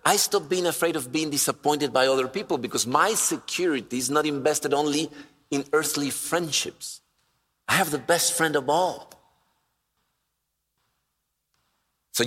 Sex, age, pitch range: male, 50-69, 140-180 Hz